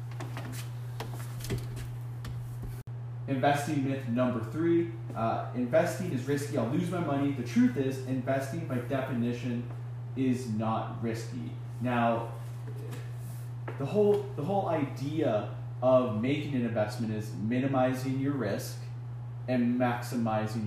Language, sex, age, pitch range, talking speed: English, male, 20-39, 120-130 Hz, 105 wpm